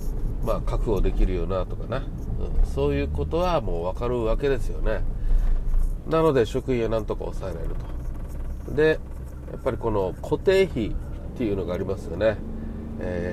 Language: Japanese